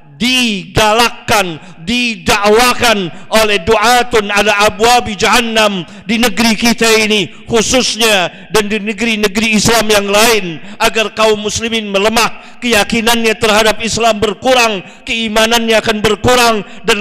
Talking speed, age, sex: 105 wpm, 50-69, male